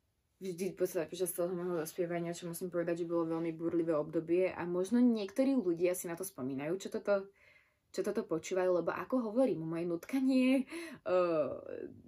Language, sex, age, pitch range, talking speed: Slovak, female, 20-39, 160-200 Hz, 160 wpm